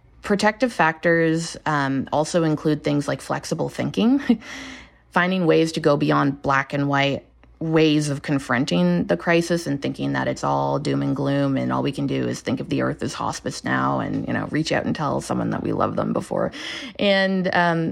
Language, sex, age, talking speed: English, female, 20-39, 195 wpm